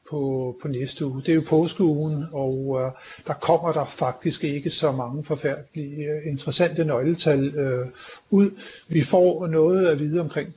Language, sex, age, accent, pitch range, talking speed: Danish, male, 60-79, native, 135-165 Hz, 165 wpm